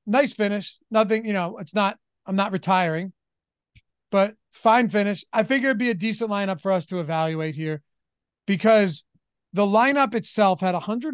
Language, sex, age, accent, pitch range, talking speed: English, male, 30-49, American, 175-220 Hz, 160 wpm